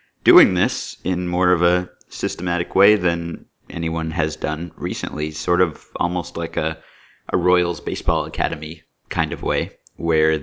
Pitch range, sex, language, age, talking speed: 80-95 Hz, male, English, 30-49, 150 wpm